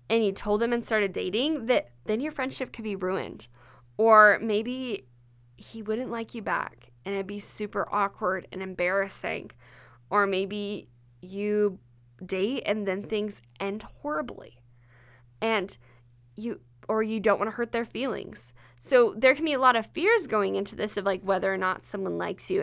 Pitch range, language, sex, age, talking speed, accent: 180-230 Hz, English, female, 10-29, 175 wpm, American